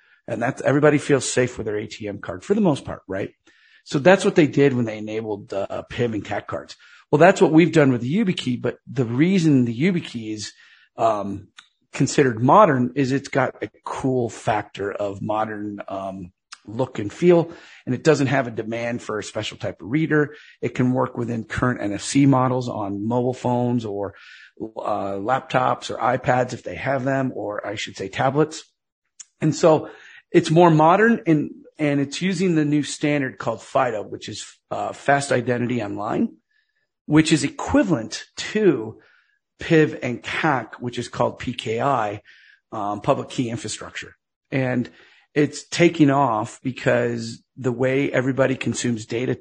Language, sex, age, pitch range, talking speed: English, male, 40-59, 115-150 Hz, 165 wpm